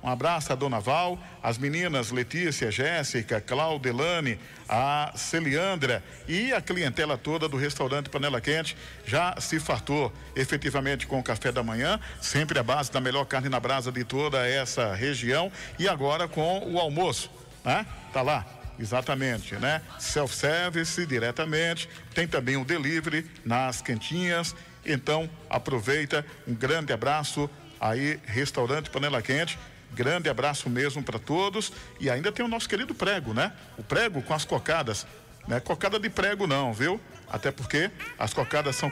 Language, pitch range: Portuguese, 125-160 Hz